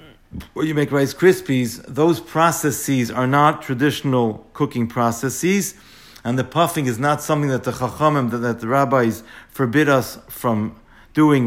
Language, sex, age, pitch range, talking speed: English, male, 50-69, 120-145 Hz, 145 wpm